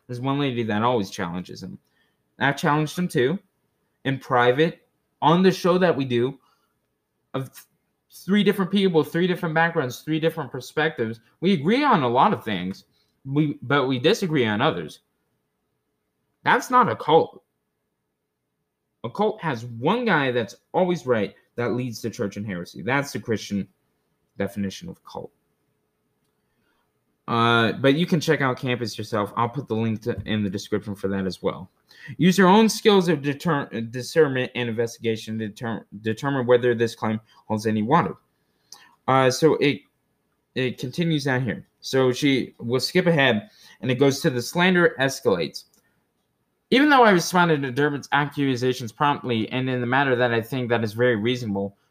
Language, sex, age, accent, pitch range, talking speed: English, male, 20-39, American, 115-155 Hz, 165 wpm